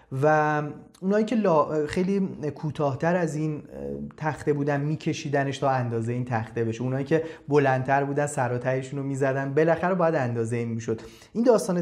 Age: 30-49